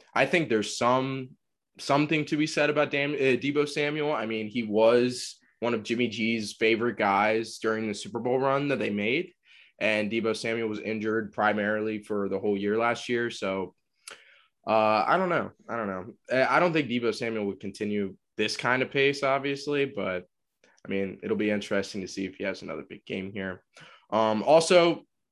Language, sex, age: English, male, 20-39